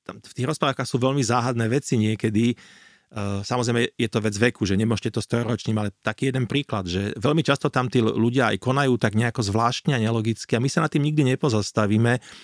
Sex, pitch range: male, 110-135 Hz